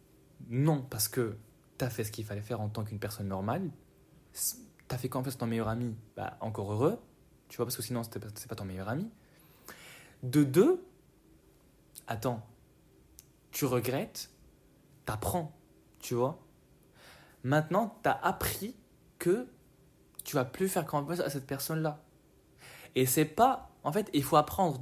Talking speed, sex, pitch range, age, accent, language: 165 wpm, male, 115-145 Hz, 20-39, French, French